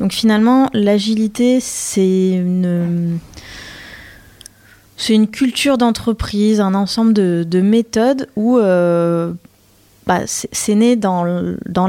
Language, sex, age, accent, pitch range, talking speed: French, female, 20-39, French, 170-220 Hz, 100 wpm